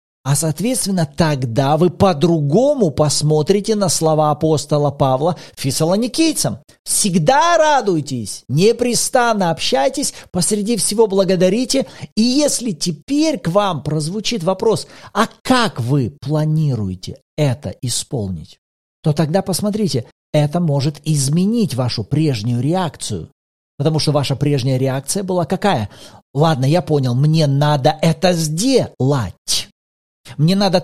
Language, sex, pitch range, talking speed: Russian, male, 130-195 Hz, 110 wpm